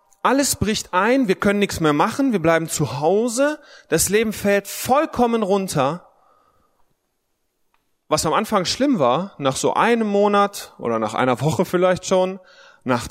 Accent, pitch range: German, 180-240 Hz